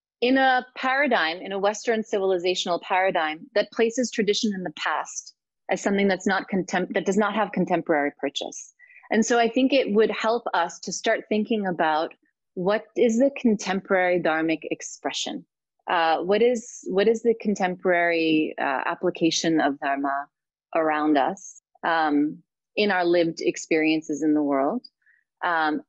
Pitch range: 165-215 Hz